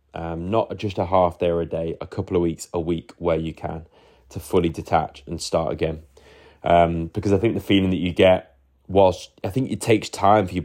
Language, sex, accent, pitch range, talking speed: English, male, British, 85-100 Hz, 230 wpm